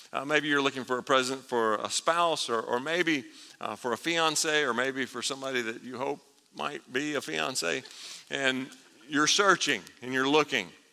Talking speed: 185 wpm